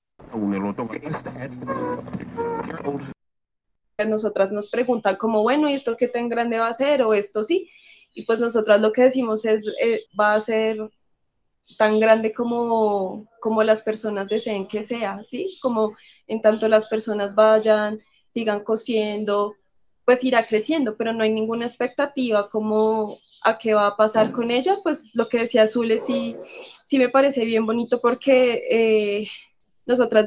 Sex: female